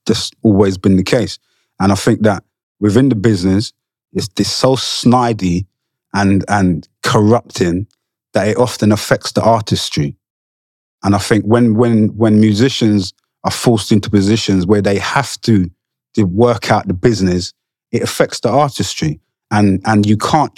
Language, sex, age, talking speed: English, male, 30-49, 155 wpm